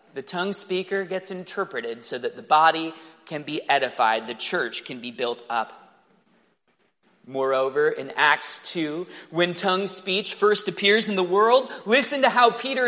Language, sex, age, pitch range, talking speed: English, male, 30-49, 160-220 Hz, 160 wpm